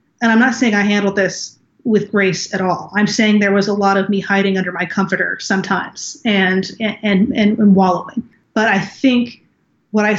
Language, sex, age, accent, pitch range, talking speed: English, female, 30-49, American, 195-225 Hz, 200 wpm